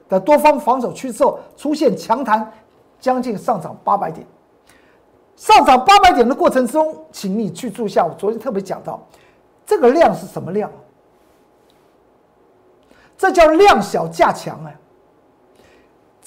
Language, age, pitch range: Chinese, 50-69, 180-270 Hz